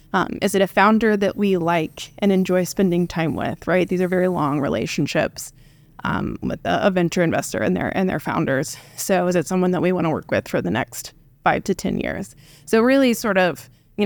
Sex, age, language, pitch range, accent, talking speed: female, 20-39, English, 165-205 Hz, American, 220 wpm